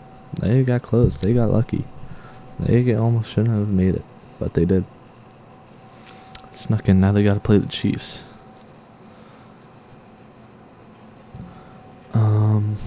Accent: American